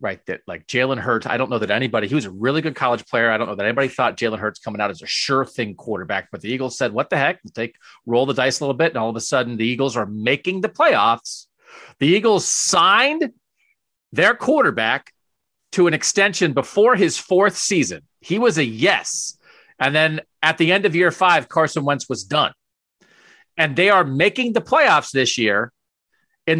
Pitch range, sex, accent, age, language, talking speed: 125-170 Hz, male, American, 40-59, English, 210 wpm